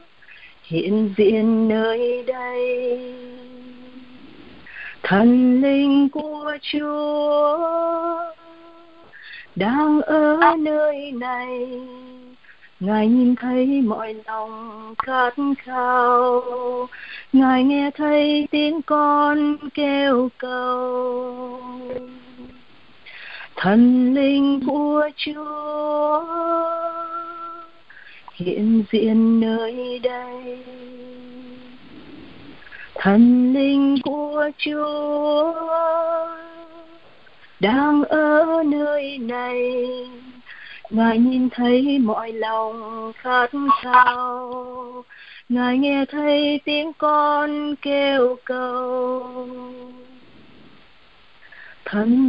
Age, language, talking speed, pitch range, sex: 30-49, Vietnamese, 65 wpm, 250-300 Hz, female